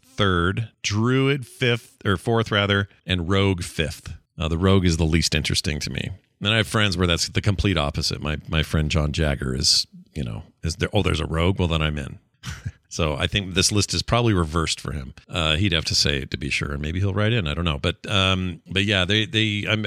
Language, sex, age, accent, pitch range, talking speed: English, male, 40-59, American, 80-105 Hz, 235 wpm